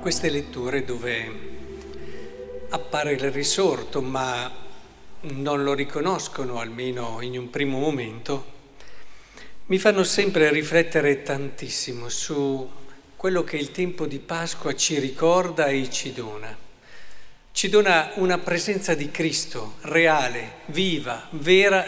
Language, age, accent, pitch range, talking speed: Italian, 50-69, native, 135-175 Hz, 110 wpm